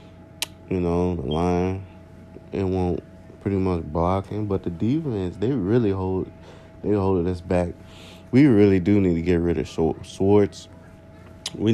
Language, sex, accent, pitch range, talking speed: English, male, American, 85-95 Hz, 155 wpm